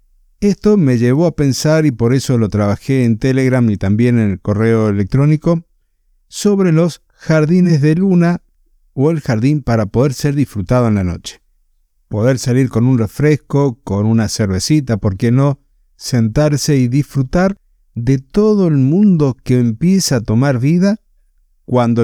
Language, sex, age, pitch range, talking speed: Spanish, male, 50-69, 110-150 Hz, 155 wpm